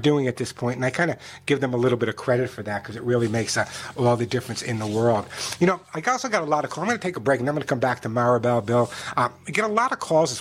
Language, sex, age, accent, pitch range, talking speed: English, male, 50-69, American, 130-180 Hz, 355 wpm